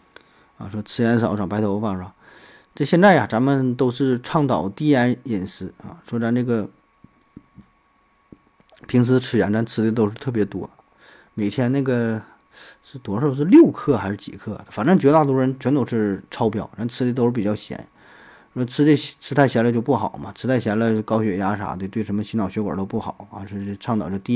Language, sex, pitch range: Chinese, male, 105-130 Hz